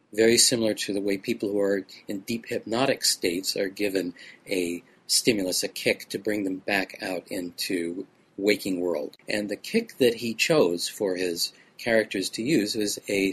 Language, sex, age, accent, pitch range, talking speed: English, male, 40-59, American, 100-130 Hz, 175 wpm